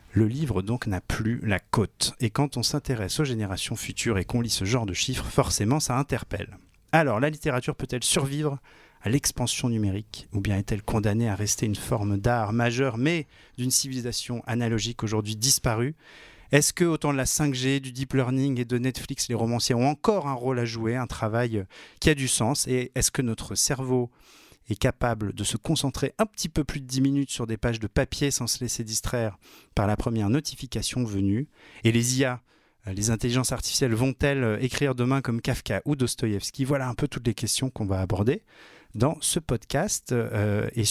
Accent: French